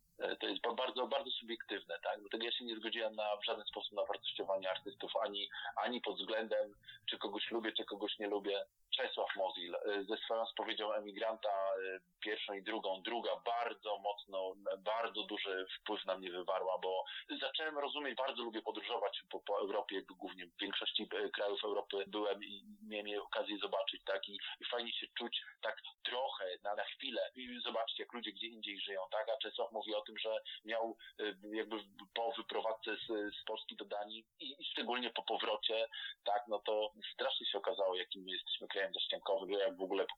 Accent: native